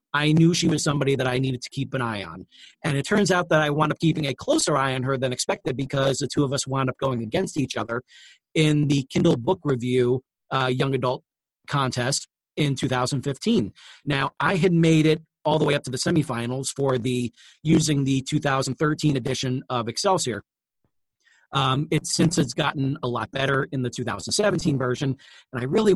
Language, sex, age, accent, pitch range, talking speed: English, male, 40-59, American, 130-160 Hz, 200 wpm